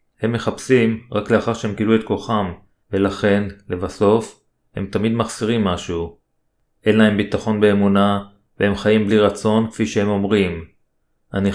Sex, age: male, 30-49